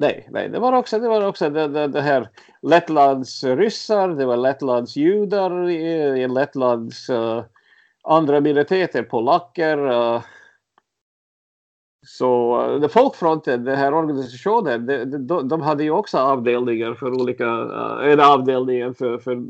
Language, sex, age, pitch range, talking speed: Swedish, male, 50-69, 125-170 Hz, 140 wpm